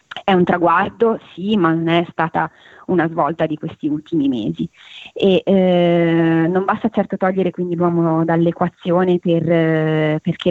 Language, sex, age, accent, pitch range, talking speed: Italian, female, 20-39, native, 165-190 Hz, 150 wpm